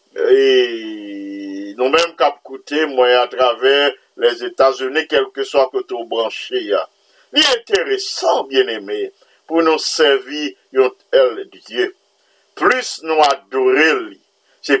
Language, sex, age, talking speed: English, male, 50-69, 120 wpm